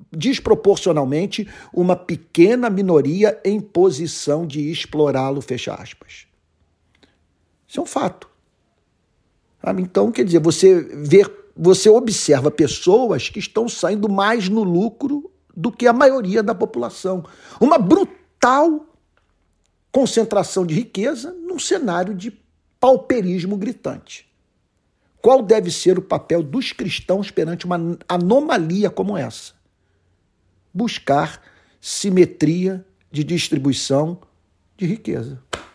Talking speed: 105 wpm